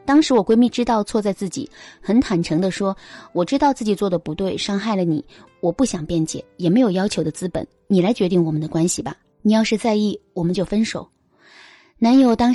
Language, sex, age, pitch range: Chinese, female, 20-39, 180-250 Hz